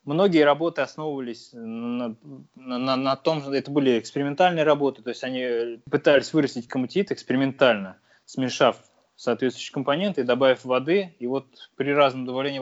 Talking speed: 145 wpm